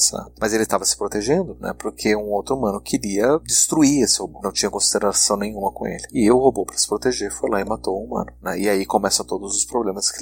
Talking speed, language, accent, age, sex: 235 wpm, Portuguese, Brazilian, 30-49, male